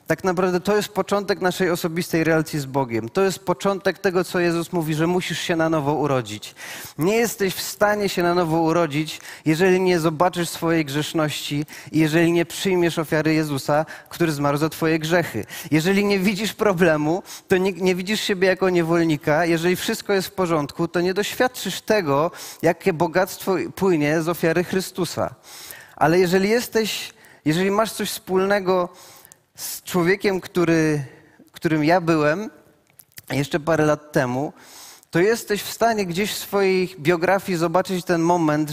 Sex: male